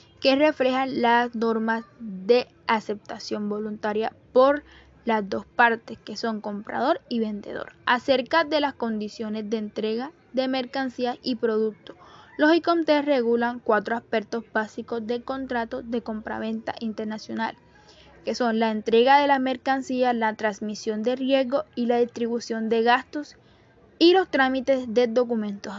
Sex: female